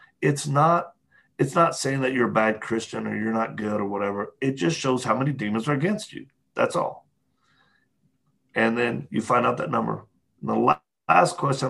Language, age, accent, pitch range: English, 40-59, American, 110-135 Hz